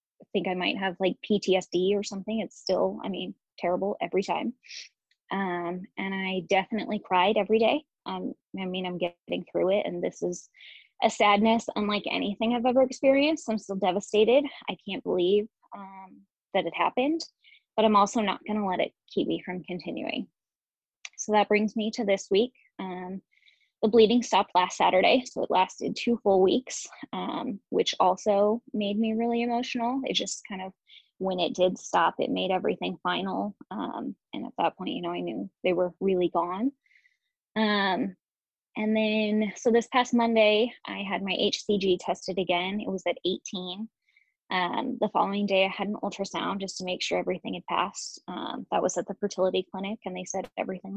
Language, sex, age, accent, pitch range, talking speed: English, female, 20-39, American, 185-225 Hz, 185 wpm